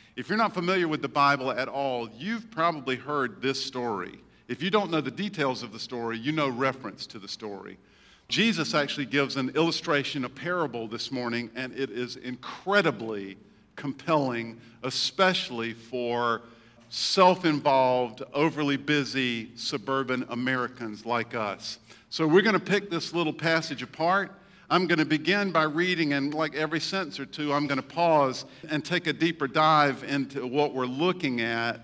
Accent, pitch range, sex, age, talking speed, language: American, 130-170 Hz, male, 50-69, 165 wpm, English